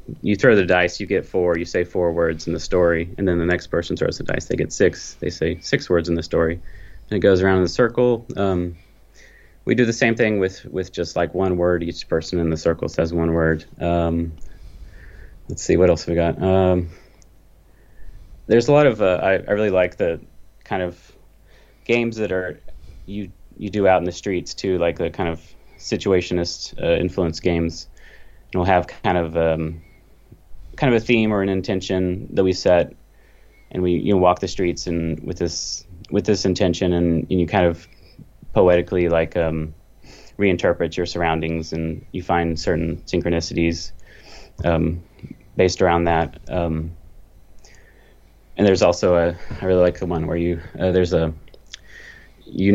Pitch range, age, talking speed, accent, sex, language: 85-95 Hz, 30-49, 185 wpm, American, male, English